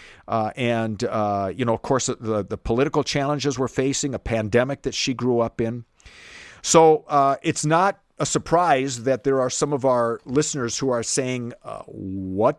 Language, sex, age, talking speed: English, male, 50-69, 180 wpm